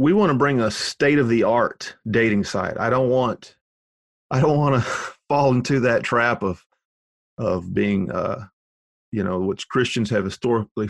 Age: 40-59